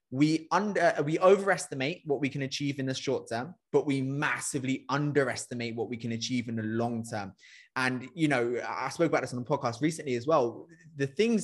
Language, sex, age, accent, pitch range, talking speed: English, male, 20-39, British, 130-155 Hz, 205 wpm